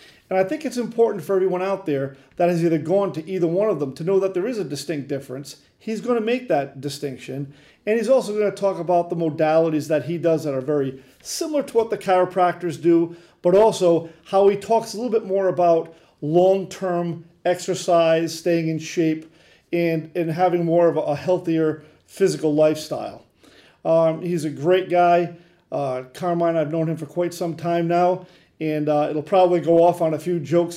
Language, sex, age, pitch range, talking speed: English, male, 40-59, 155-195 Hz, 195 wpm